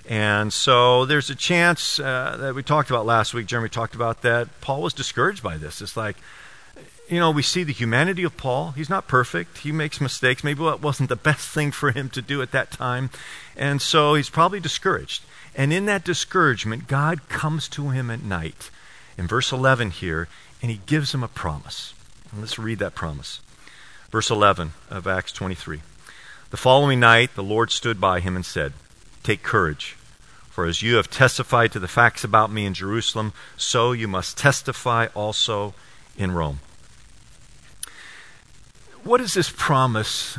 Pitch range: 105-145 Hz